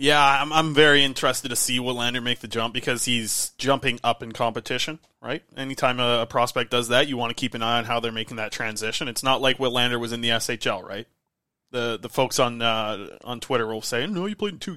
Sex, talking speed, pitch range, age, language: male, 250 wpm, 120-140 Hz, 20-39, English